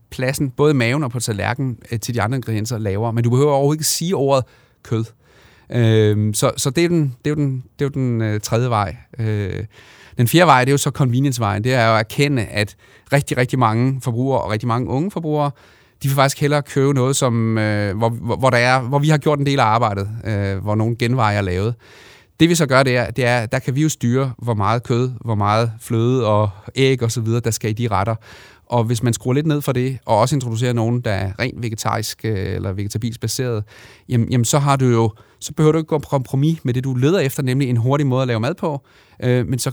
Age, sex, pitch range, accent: 30-49, male, 115-140 Hz, native